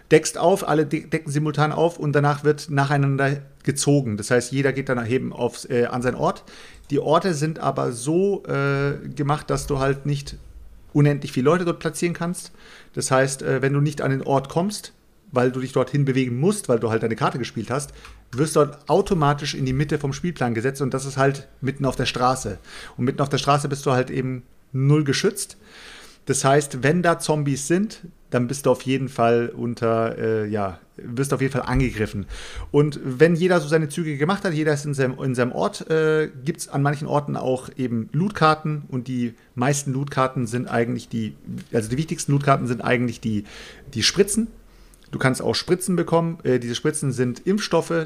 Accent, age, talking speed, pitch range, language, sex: German, 40-59, 200 wpm, 125-155 Hz, German, male